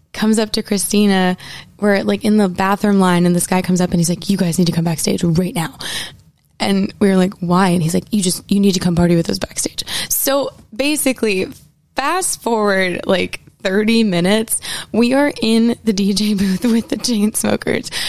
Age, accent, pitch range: 20-39, American, 185-230 Hz